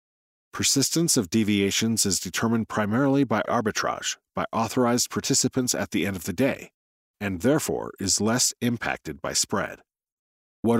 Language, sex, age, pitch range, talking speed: English, male, 50-69, 100-130 Hz, 140 wpm